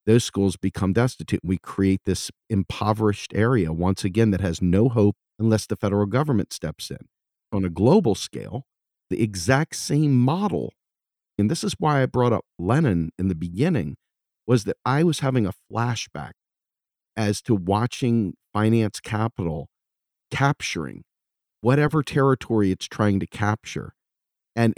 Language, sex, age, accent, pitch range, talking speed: English, male, 50-69, American, 95-115 Hz, 145 wpm